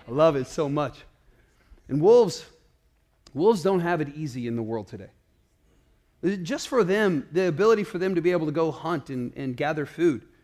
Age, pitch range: 30-49, 180-295 Hz